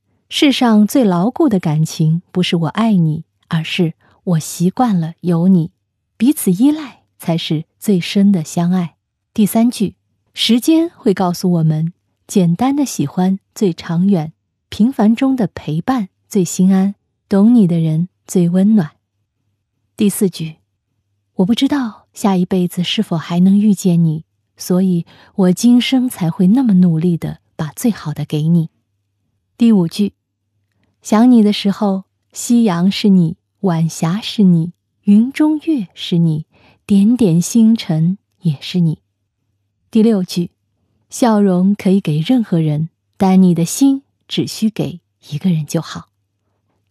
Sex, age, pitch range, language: female, 20-39, 155-205 Hz, Chinese